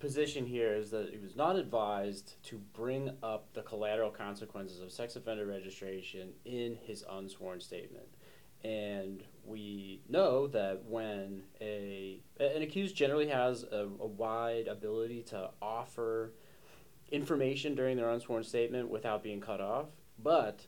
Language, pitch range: English, 100-125 Hz